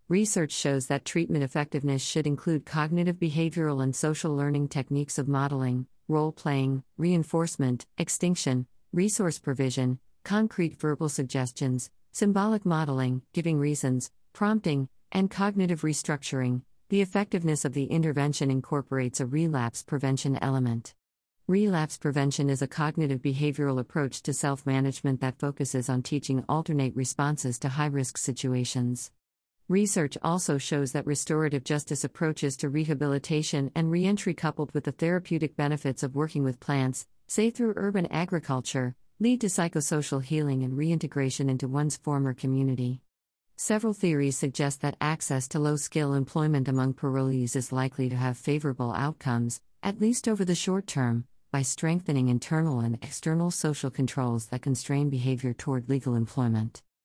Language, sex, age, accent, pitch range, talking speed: English, female, 50-69, American, 130-160 Hz, 140 wpm